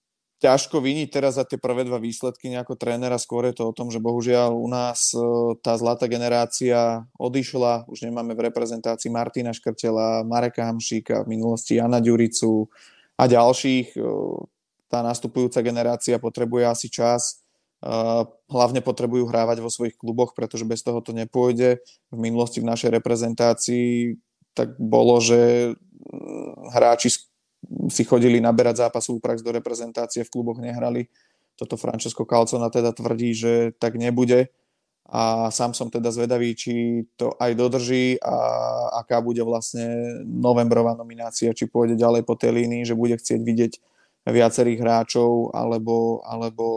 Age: 20-39